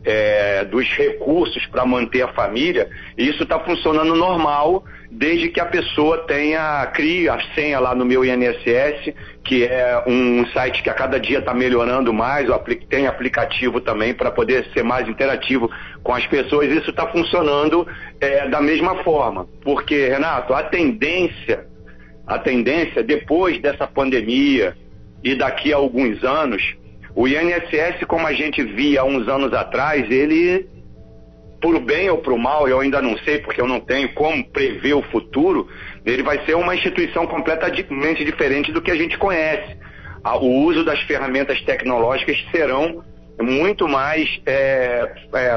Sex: male